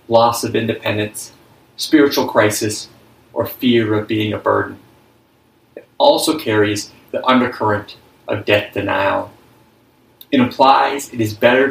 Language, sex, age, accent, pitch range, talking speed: English, male, 30-49, American, 105-125 Hz, 125 wpm